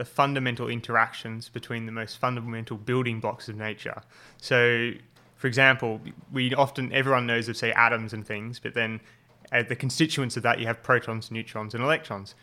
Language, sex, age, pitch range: English, male, 20-39, 115-125 Hz